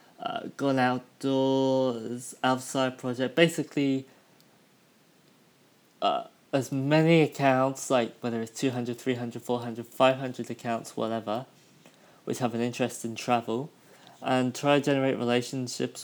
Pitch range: 115-130 Hz